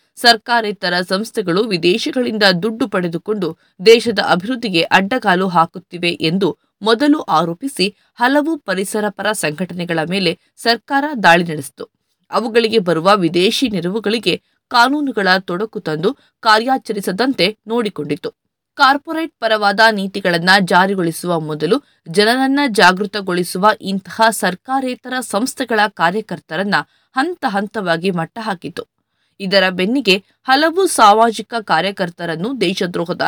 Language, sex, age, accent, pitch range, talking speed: Kannada, female, 20-39, native, 180-235 Hz, 85 wpm